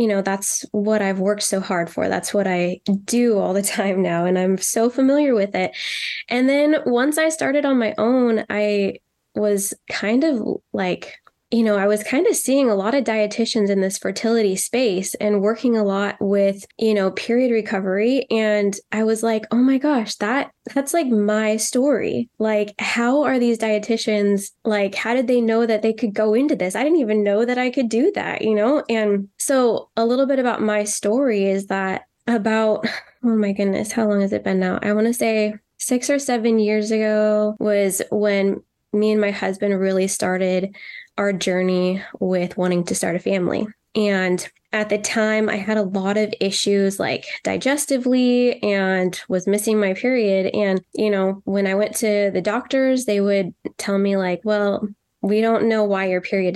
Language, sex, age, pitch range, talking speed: English, female, 10-29, 200-235 Hz, 195 wpm